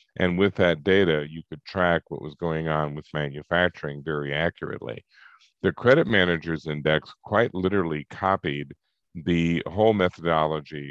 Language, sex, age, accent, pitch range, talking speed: English, male, 50-69, American, 75-90 Hz, 140 wpm